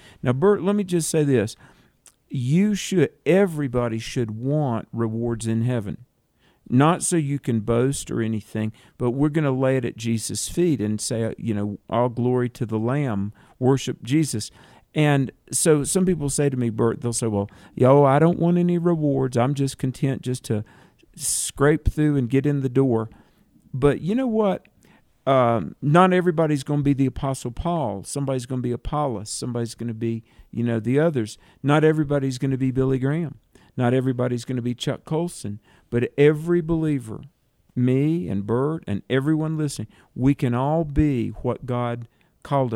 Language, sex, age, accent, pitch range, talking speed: English, male, 50-69, American, 115-150 Hz, 180 wpm